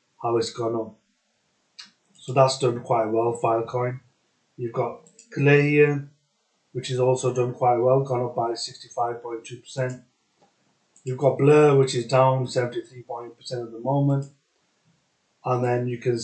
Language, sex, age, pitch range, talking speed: English, male, 30-49, 120-135 Hz, 145 wpm